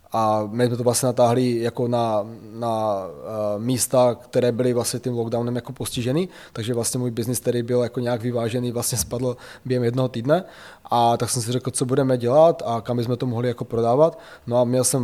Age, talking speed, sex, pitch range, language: 20-39, 205 wpm, male, 120-135 Hz, Czech